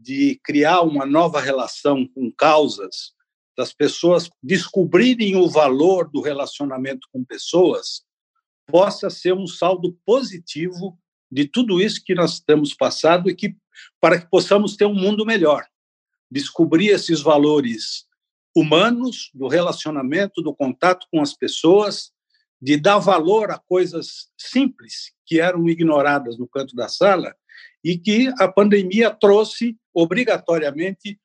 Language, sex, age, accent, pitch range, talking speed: Portuguese, male, 60-79, Brazilian, 155-195 Hz, 130 wpm